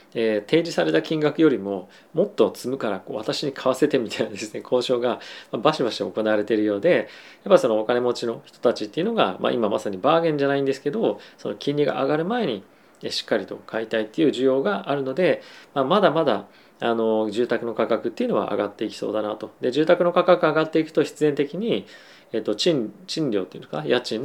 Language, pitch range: Japanese, 110-155 Hz